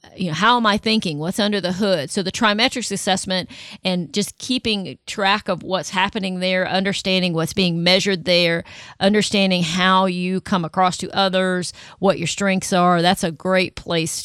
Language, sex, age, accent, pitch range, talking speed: English, female, 40-59, American, 170-195 Hz, 175 wpm